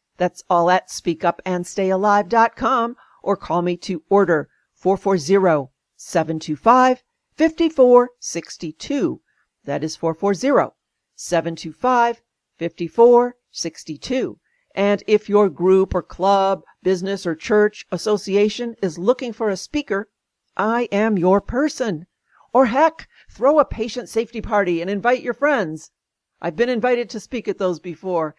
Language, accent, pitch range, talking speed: English, American, 180-250 Hz, 110 wpm